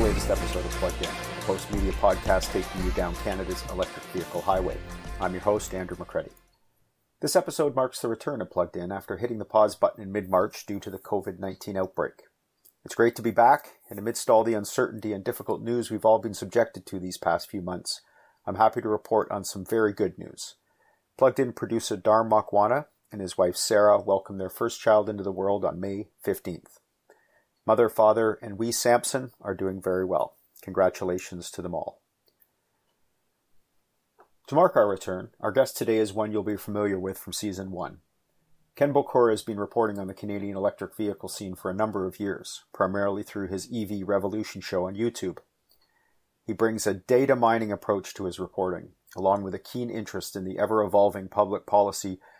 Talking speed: 185 wpm